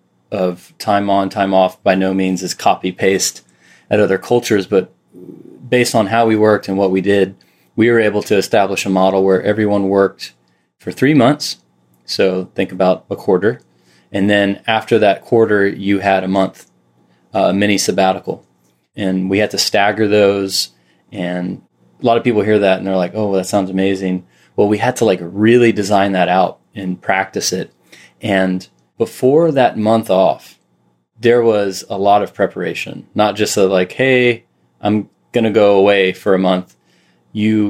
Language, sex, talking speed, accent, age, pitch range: English, male, 175 wpm, American, 20-39, 95-105 Hz